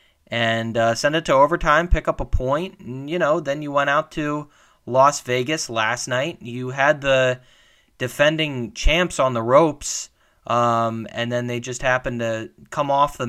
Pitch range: 115-150 Hz